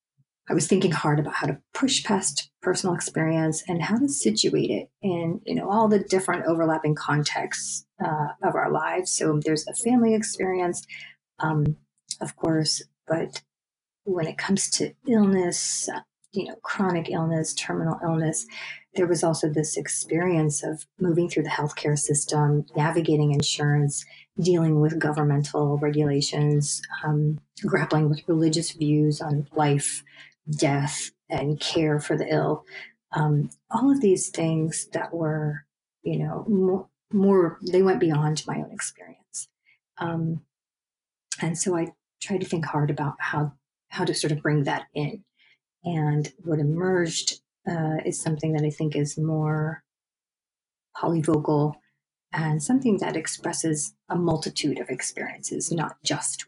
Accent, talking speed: American, 140 wpm